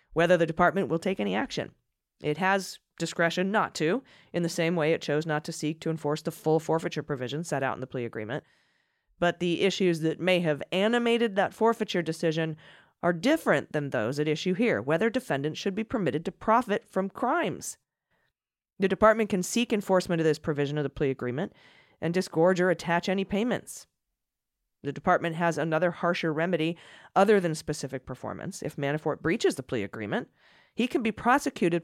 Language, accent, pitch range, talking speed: English, American, 155-200 Hz, 185 wpm